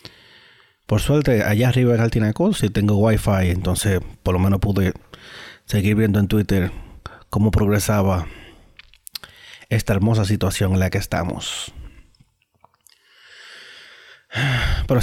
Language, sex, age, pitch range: Spanish, male, 30-49, 95-115 Hz